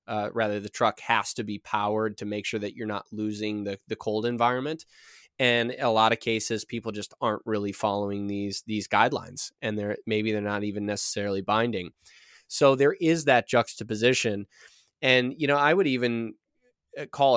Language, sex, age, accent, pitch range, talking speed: English, male, 20-39, American, 105-125 Hz, 180 wpm